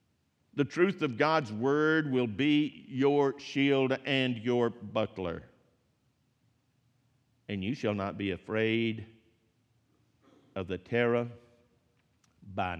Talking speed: 105 wpm